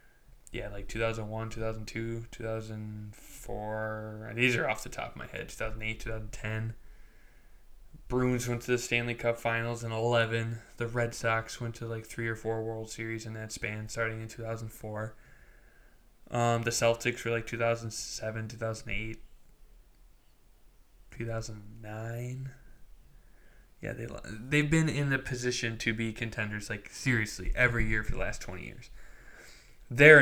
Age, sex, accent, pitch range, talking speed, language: 10-29, male, American, 110-120 Hz, 135 wpm, English